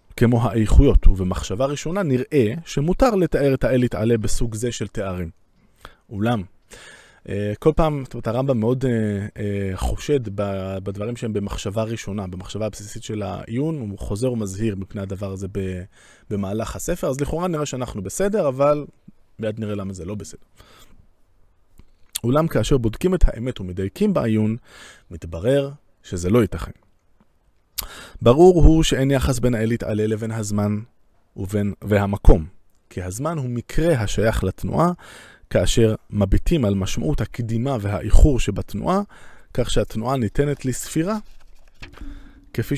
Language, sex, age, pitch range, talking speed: Hebrew, male, 20-39, 100-135 Hz, 125 wpm